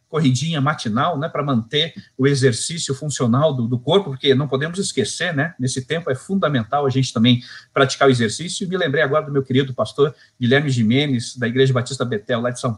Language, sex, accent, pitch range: Portuguese, male, Brazilian, 130-195 Hz